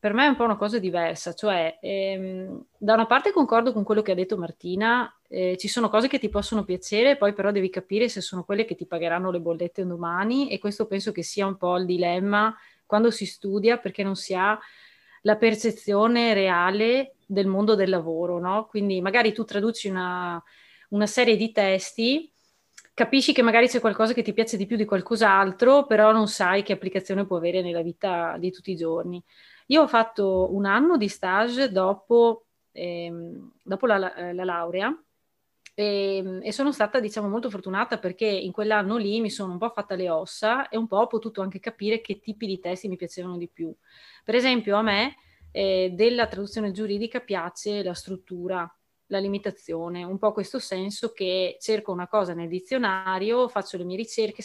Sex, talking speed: female, 190 wpm